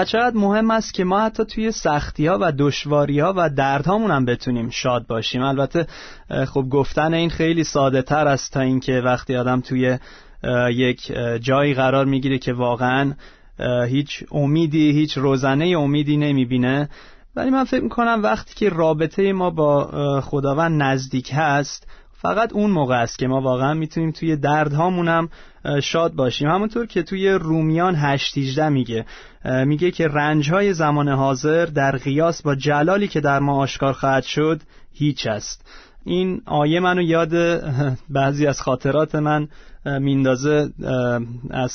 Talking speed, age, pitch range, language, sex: 145 wpm, 30-49, 135-165 Hz, Persian, male